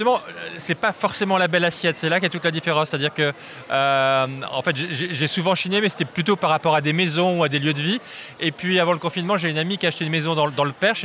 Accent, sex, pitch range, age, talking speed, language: French, male, 150-180 Hz, 20-39, 295 wpm, French